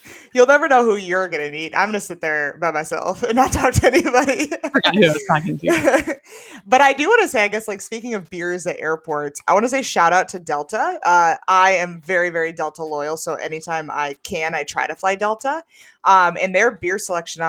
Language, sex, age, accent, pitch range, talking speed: English, female, 20-39, American, 160-220 Hz, 215 wpm